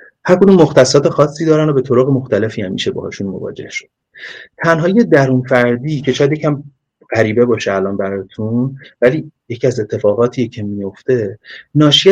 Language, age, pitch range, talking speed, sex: Persian, 30-49, 115-145 Hz, 155 wpm, male